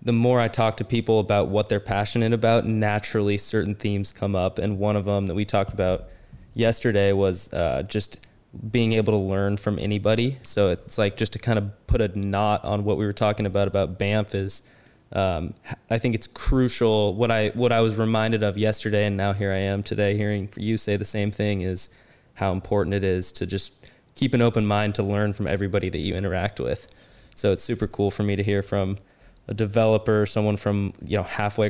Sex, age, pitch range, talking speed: male, 20-39, 100-110 Hz, 215 wpm